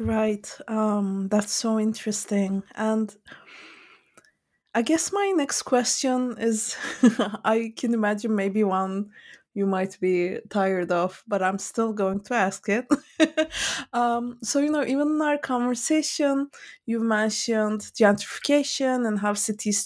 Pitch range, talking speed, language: 200-260 Hz, 130 wpm, English